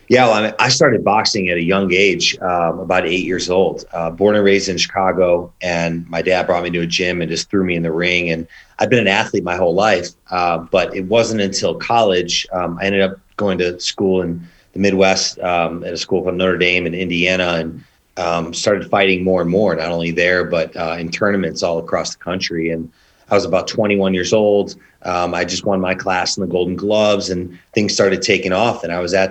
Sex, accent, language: male, American, English